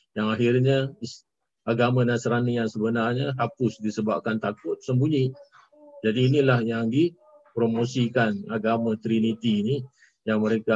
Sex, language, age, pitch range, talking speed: male, Malay, 50-69, 115-145 Hz, 105 wpm